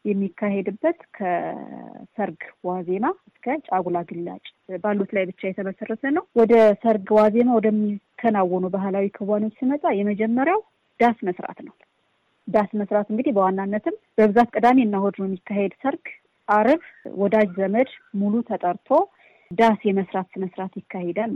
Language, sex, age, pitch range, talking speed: Amharic, female, 30-49, 195-240 Hz, 115 wpm